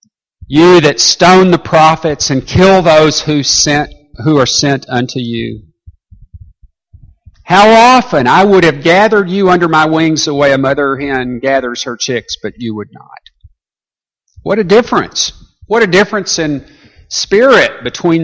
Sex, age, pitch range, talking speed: male, 50-69, 100-160 Hz, 150 wpm